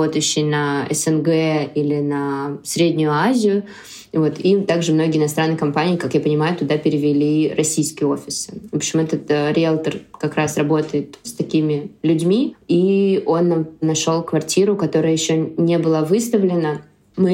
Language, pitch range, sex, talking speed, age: Russian, 155-190 Hz, female, 145 wpm, 20-39